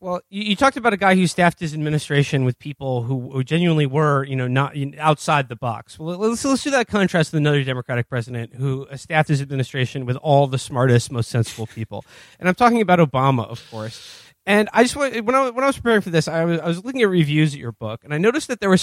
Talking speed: 260 wpm